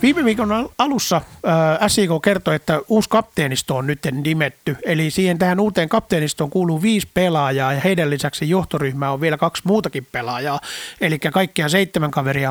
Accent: native